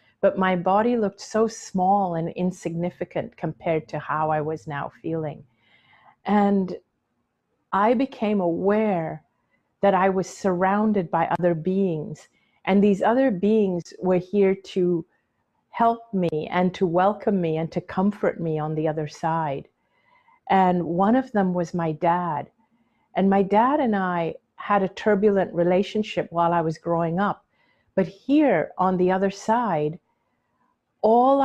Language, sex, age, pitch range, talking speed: English, female, 50-69, 170-210 Hz, 145 wpm